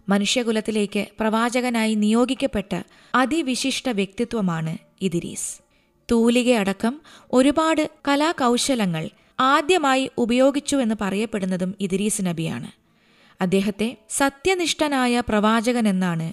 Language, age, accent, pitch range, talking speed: Malayalam, 20-39, native, 195-260 Hz, 65 wpm